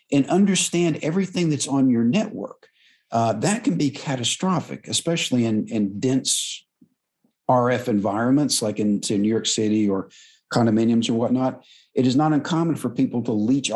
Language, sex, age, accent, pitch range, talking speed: English, male, 50-69, American, 115-150 Hz, 155 wpm